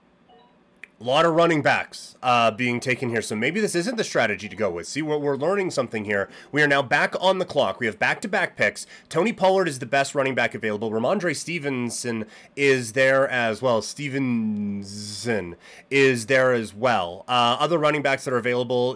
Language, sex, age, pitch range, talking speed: English, male, 30-49, 115-145 Hz, 195 wpm